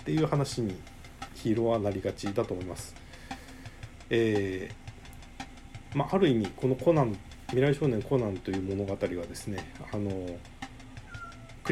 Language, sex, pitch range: Japanese, male, 100-130 Hz